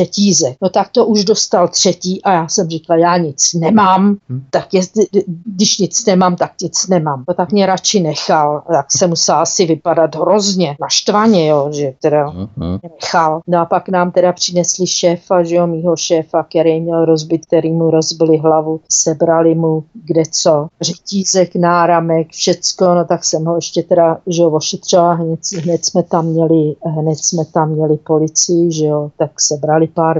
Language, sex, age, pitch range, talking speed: Czech, female, 40-59, 160-185 Hz, 170 wpm